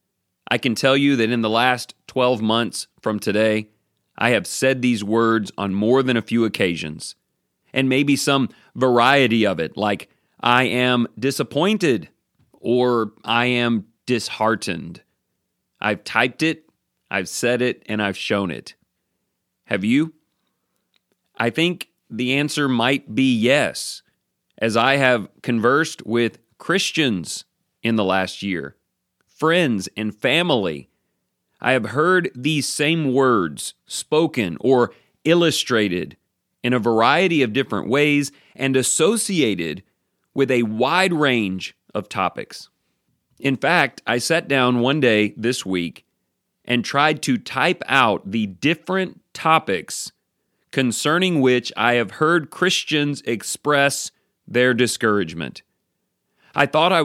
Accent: American